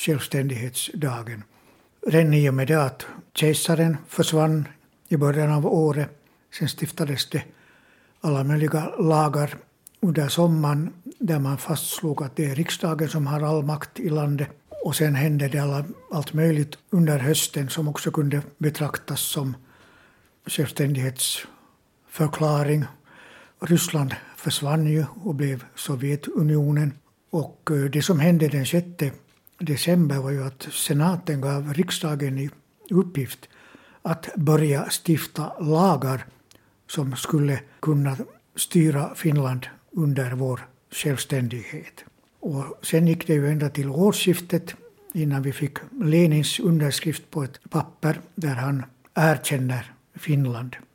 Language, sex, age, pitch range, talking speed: Swedish, male, 60-79, 140-160 Hz, 115 wpm